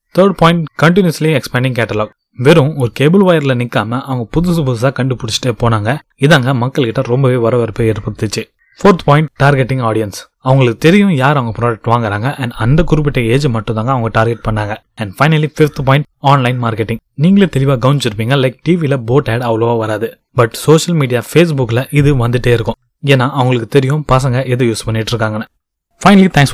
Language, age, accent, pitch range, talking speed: Tamil, 20-39, native, 115-145 Hz, 155 wpm